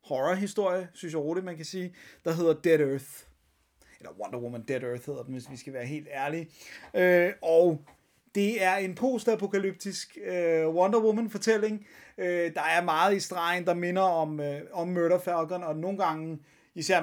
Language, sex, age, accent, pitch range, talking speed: Danish, male, 30-49, native, 150-180 Hz, 180 wpm